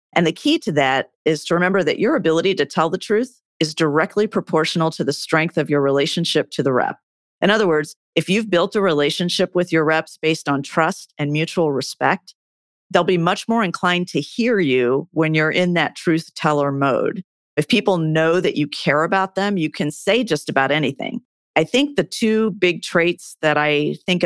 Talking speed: 205 wpm